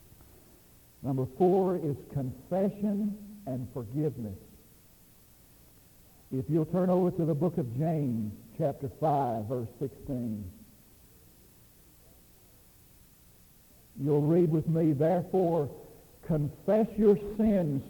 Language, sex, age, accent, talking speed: English, male, 60-79, American, 90 wpm